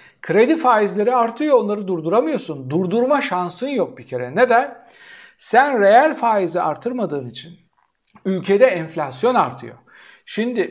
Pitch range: 175-240 Hz